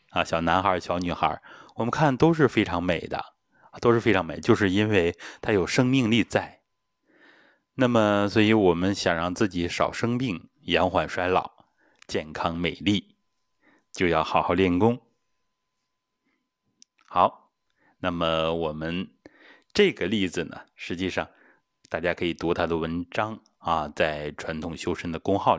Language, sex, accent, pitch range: Chinese, male, native, 85-115 Hz